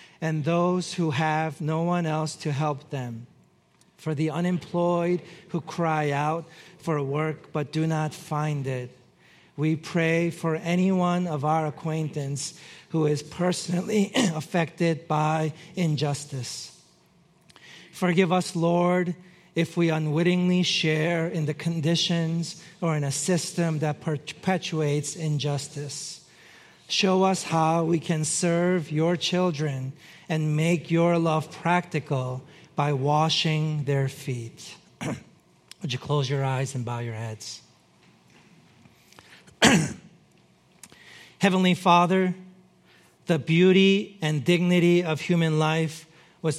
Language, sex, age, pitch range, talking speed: English, male, 40-59, 150-175 Hz, 115 wpm